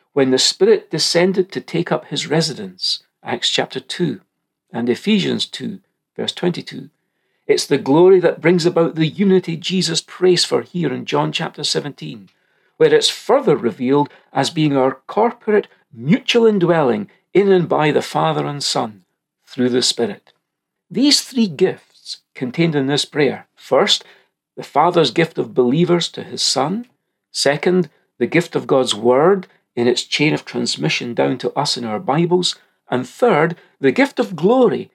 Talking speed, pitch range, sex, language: 160 wpm, 135-195 Hz, male, English